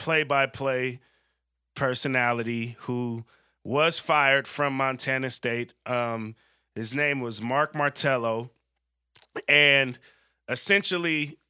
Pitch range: 125-155 Hz